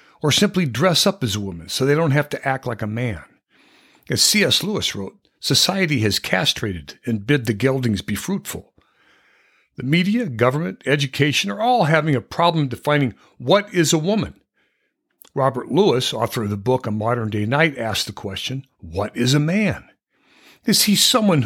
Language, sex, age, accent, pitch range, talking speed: English, male, 60-79, American, 110-170 Hz, 175 wpm